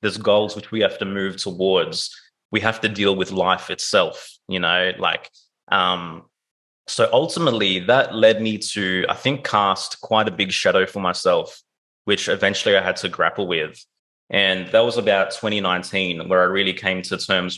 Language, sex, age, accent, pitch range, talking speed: English, male, 20-39, Australian, 95-110 Hz, 180 wpm